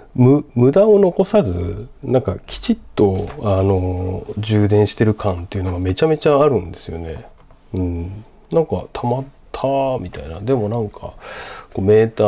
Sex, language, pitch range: male, Japanese, 90-115 Hz